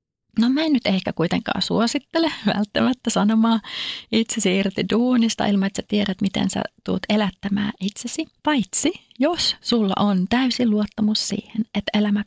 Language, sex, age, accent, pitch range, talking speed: Finnish, female, 30-49, native, 200-230 Hz, 145 wpm